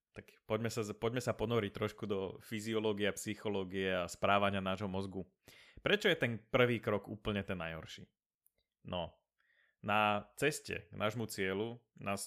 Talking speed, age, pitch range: 145 wpm, 20-39, 100-120 Hz